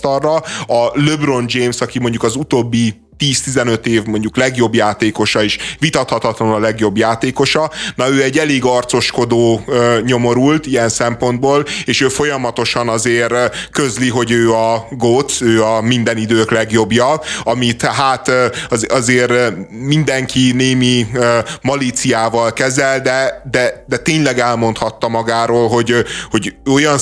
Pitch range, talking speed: 115-130 Hz, 120 wpm